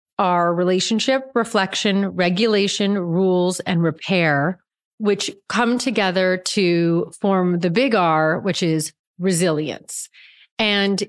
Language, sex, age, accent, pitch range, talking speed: English, female, 30-49, American, 170-220 Hz, 105 wpm